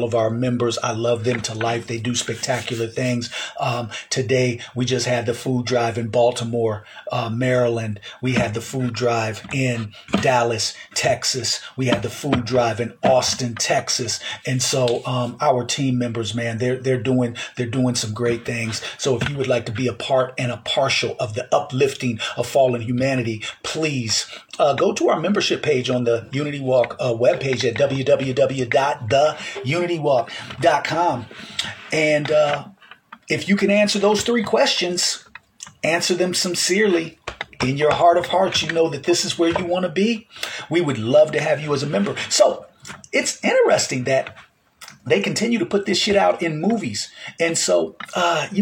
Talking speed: 175 wpm